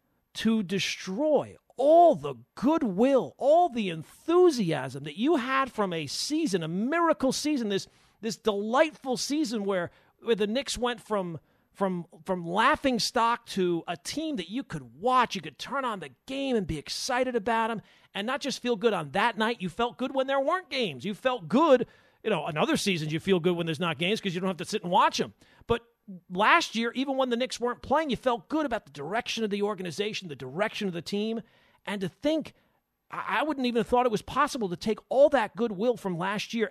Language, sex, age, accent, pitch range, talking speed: English, male, 40-59, American, 190-260 Hz, 210 wpm